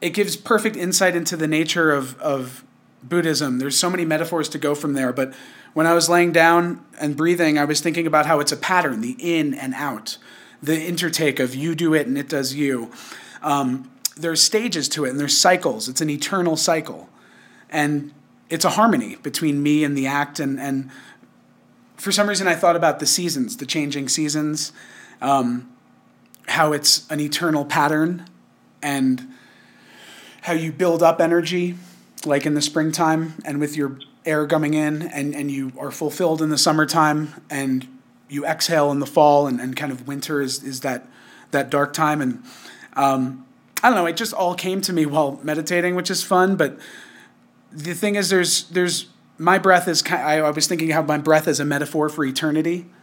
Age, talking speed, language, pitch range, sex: 30-49, 185 wpm, English, 145-175 Hz, male